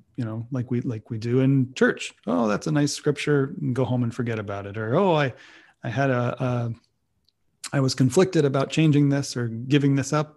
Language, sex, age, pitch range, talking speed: English, male, 30-49, 120-140 Hz, 215 wpm